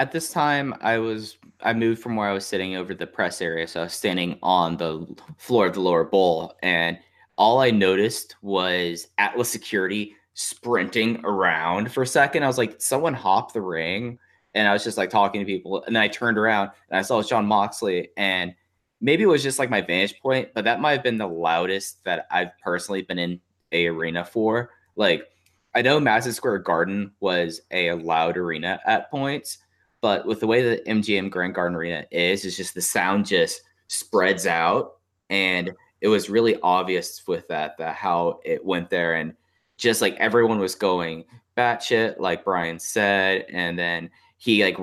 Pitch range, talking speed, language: 90-115 Hz, 190 wpm, English